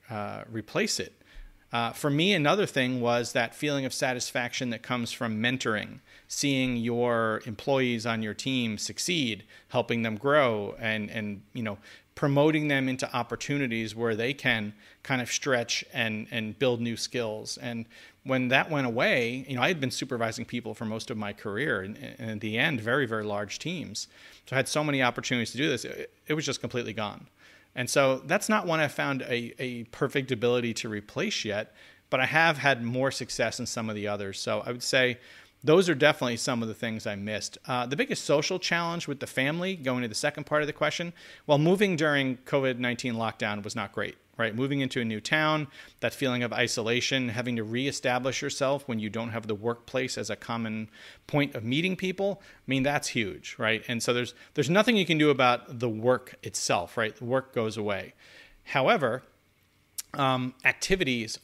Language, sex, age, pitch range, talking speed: English, male, 40-59, 115-140 Hz, 195 wpm